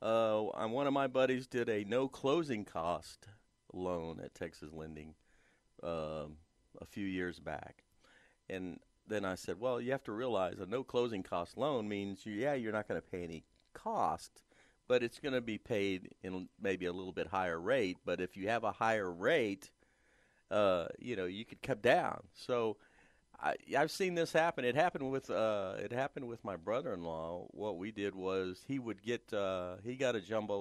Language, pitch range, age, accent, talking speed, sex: English, 90-125 Hz, 40-59, American, 185 wpm, male